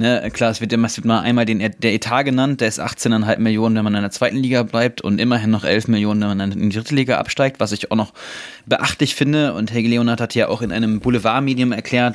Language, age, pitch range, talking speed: German, 20-39, 110-125 Hz, 230 wpm